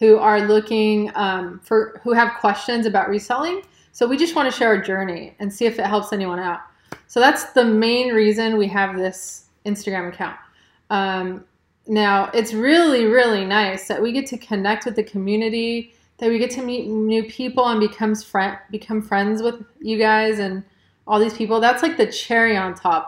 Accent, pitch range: American, 200-245 Hz